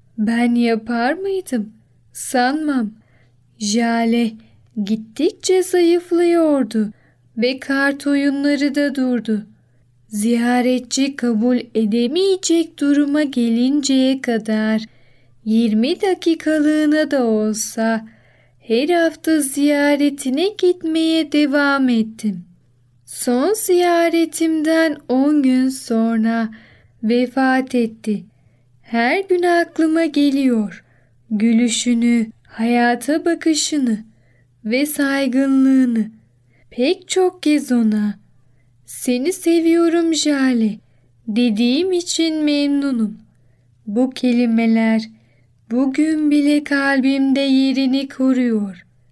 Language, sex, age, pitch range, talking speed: Turkish, female, 10-29, 220-290 Hz, 75 wpm